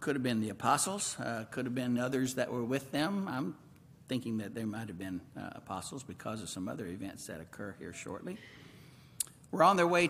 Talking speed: 215 wpm